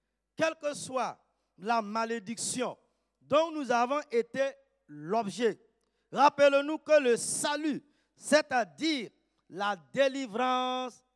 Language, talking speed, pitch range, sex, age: French, 90 wpm, 205-280 Hz, male, 50-69